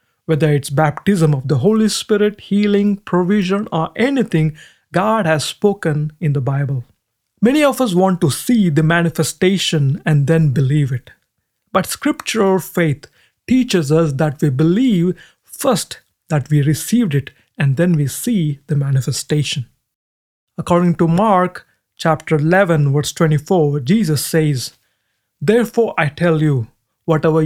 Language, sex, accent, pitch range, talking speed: English, male, Indian, 145-190 Hz, 135 wpm